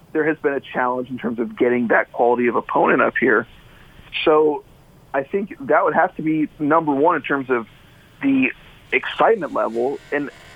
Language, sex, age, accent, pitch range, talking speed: English, male, 40-59, American, 125-155 Hz, 180 wpm